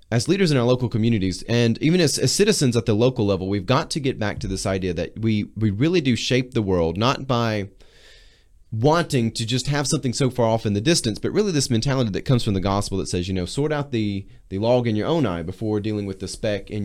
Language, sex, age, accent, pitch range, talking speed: English, male, 30-49, American, 100-130 Hz, 255 wpm